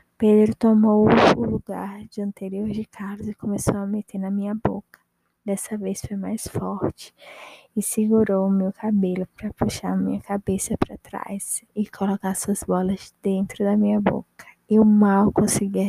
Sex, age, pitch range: female, 20-39, 195-215 Hz